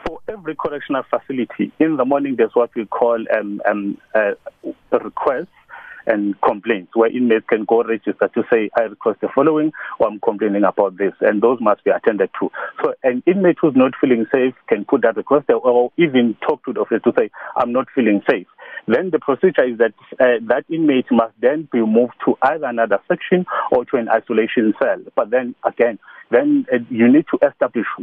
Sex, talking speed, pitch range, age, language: male, 200 wpm, 110-130 Hz, 40-59, English